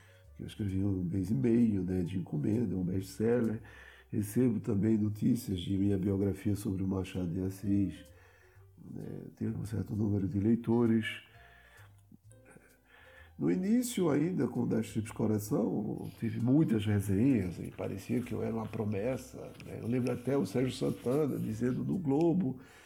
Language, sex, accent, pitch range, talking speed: Portuguese, male, Brazilian, 95-125 Hz, 150 wpm